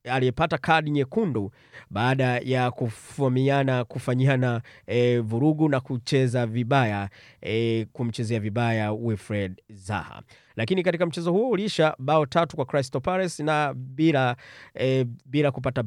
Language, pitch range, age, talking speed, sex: Swahili, 125-160 Hz, 30-49, 120 wpm, male